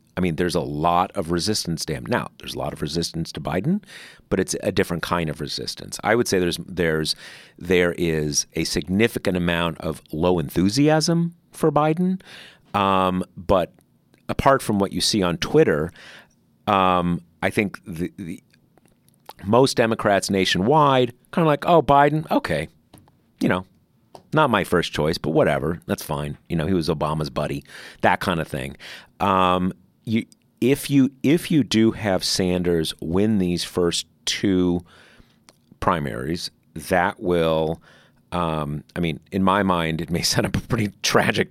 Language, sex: English, male